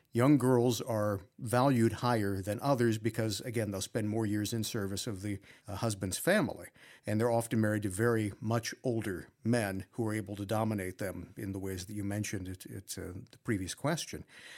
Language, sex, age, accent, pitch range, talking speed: English, male, 50-69, American, 105-125 Hz, 190 wpm